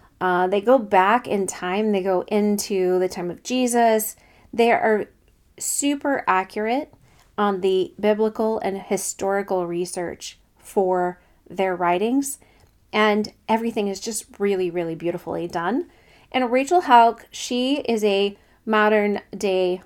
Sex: female